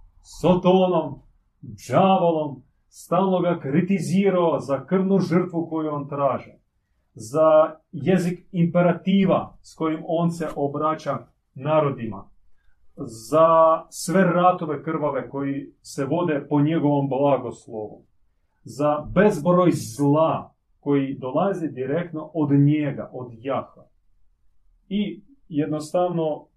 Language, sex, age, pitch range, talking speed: Croatian, male, 40-59, 120-165 Hz, 95 wpm